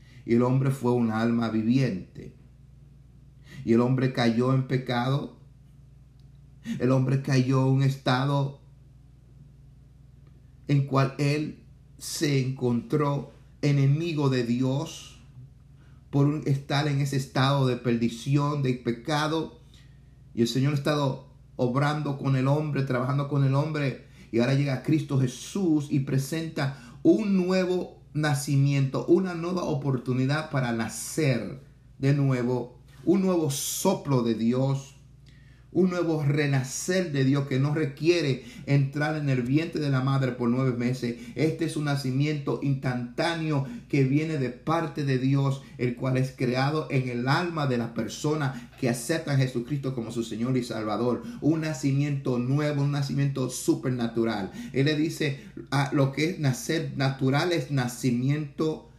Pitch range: 130-145 Hz